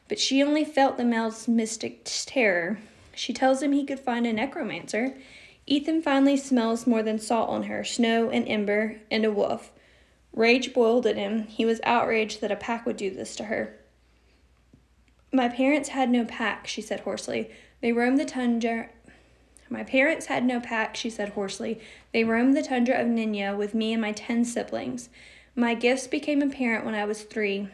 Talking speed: 185 wpm